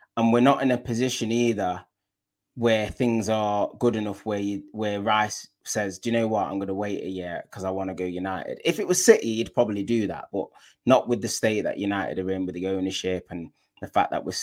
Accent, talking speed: British, 240 wpm